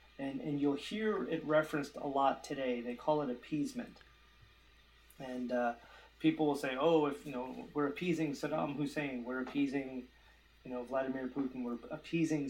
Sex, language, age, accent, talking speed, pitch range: male, English, 30-49, American, 165 wpm, 125-155 Hz